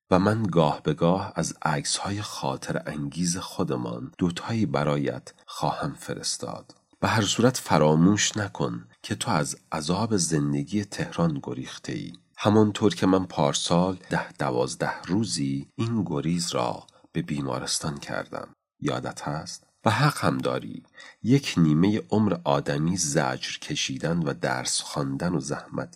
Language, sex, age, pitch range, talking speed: Persian, male, 40-59, 75-105 Hz, 135 wpm